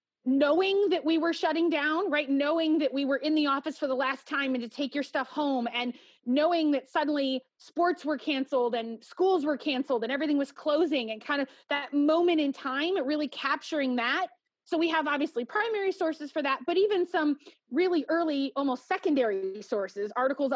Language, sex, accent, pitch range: English, female, American, 255-325 Hz